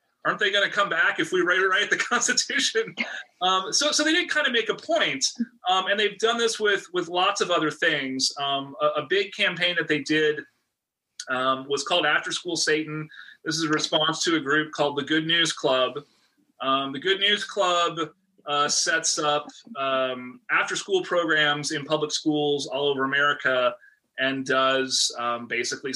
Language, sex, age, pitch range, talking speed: English, male, 30-49, 135-180 Hz, 190 wpm